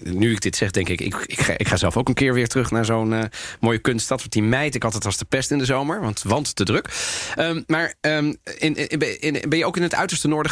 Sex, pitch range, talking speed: male, 110-145 Hz, 285 wpm